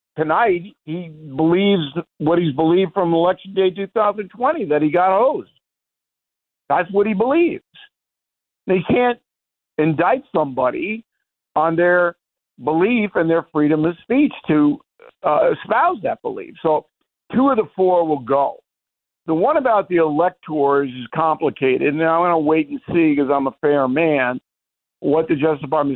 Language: English